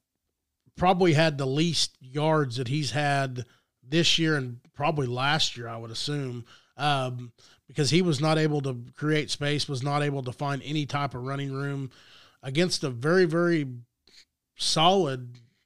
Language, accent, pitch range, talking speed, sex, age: English, American, 135-165 Hz, 155 wpm, male, 30-49